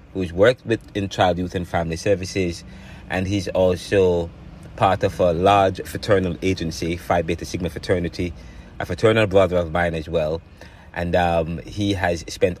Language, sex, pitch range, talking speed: English, male, 85-95 Hz, 160 wpm